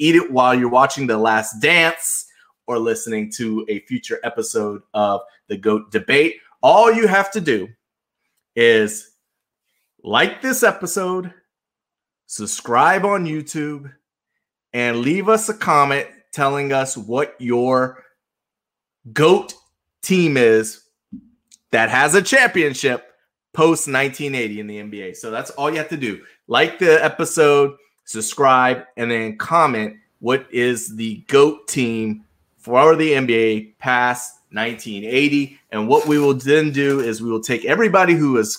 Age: 30-49